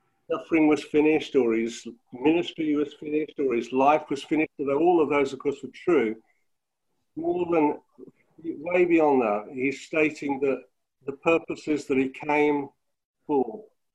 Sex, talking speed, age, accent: male, 150 wpm, 50-69, British